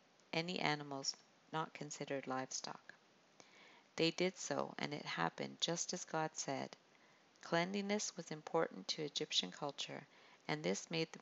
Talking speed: 135 wpm